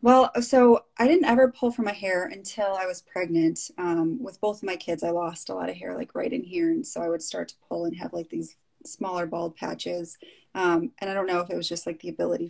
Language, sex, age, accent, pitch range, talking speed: English, female, 20-39, American, 170-215 Hz, 265 wpm